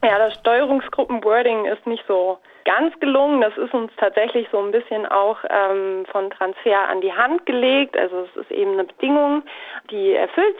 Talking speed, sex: 175 wpm, female